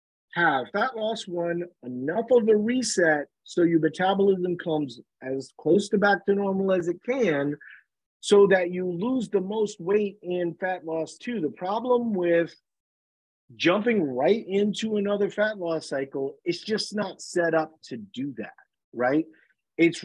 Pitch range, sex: 145-205 Hz, male